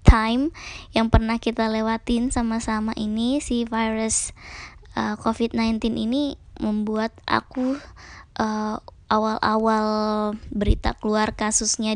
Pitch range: 210-235 Hz